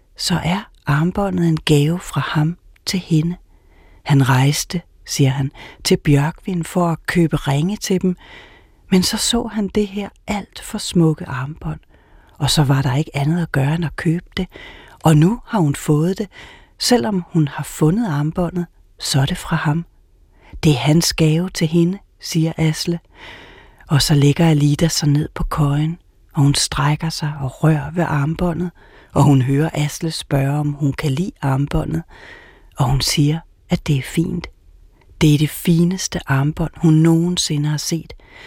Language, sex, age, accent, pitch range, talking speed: Danish, female, 40-59, native, 145-175 Hz, 170 wpm